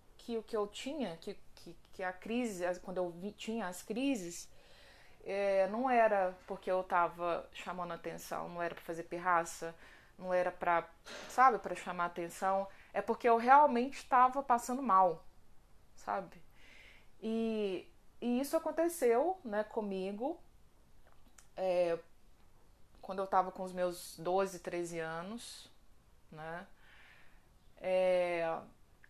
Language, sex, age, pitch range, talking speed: Portuguese, female, 20-39, 180-230 Hz, 125 wpm